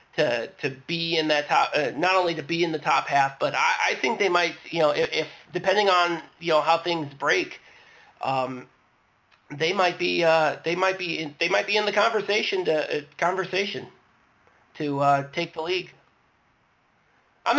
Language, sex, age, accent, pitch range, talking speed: English, male, 30-49, American, 140-185 Hz, 190 wpm